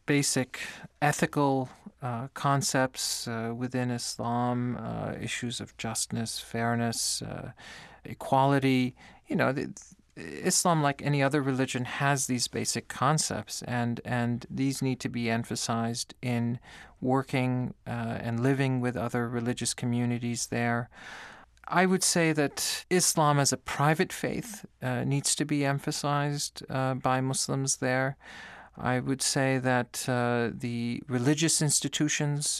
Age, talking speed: 40-59, 125 wpm